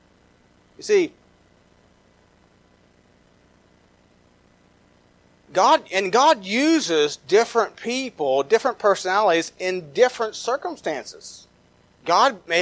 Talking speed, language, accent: 70 wpm, English, American